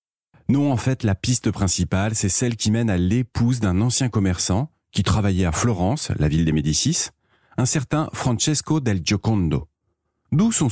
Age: 40-59